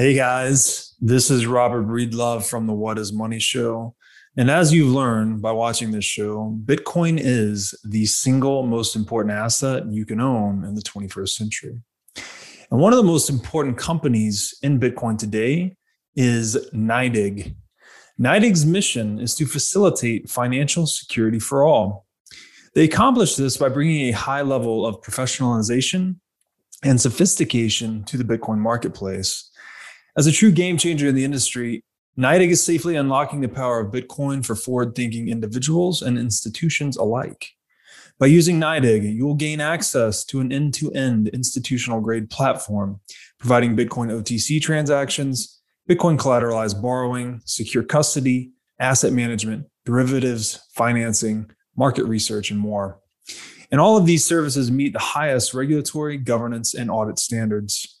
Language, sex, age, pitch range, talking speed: English, male, 20-39, 110-140 Hz, 140 wpm